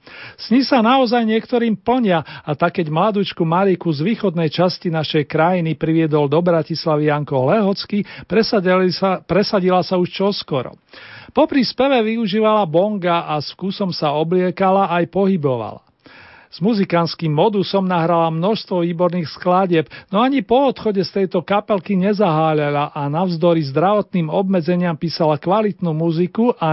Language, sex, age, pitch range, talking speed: Slovak, male, 40-59, 165-200 Hz, 125 wpm